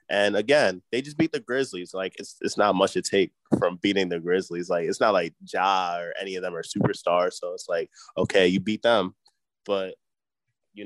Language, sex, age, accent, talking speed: English, male, 20-39, American, 210 wpm